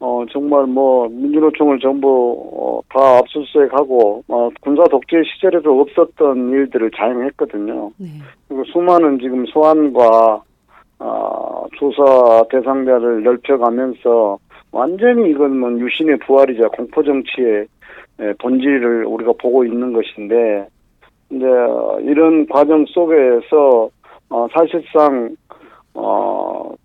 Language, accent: Korean, native